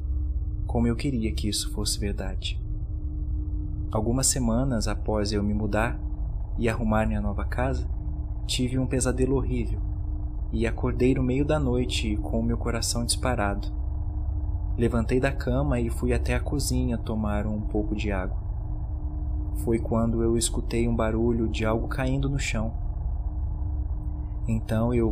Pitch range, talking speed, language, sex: 80-115 Hz, 140 wpm, Portuguese, male